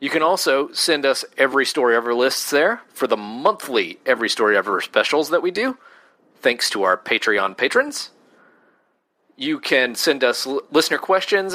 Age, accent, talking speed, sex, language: 40-59, American, 165 wpm, male, English